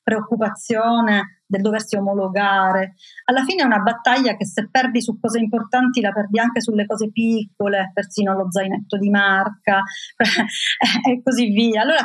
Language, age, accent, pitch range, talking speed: Italian, 30-49, native, 180-230 Hz, 150 wpm